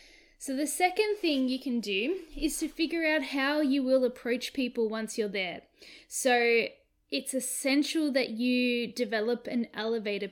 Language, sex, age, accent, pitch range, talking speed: English, female, 10-29, Australian, 230-285 Hz, 155 wpm